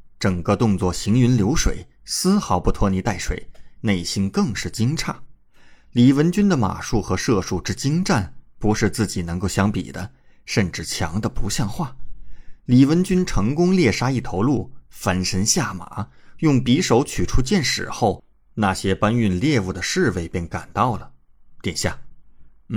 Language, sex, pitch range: Chinese, male, 95-130 Hz